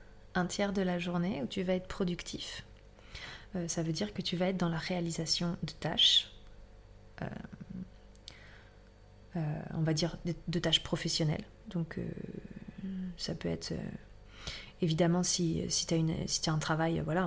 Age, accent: 30-49, French